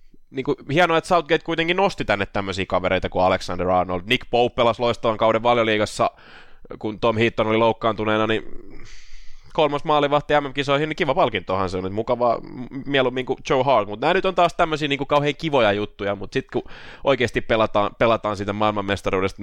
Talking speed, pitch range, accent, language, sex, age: 175 wpm, 100-130 Hz, native, Finnish, male, 20-39